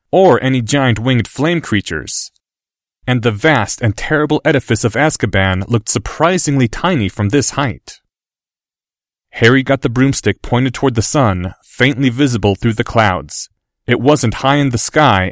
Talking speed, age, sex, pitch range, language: 155 wpm, 30-49, male, 105-140 Hz, English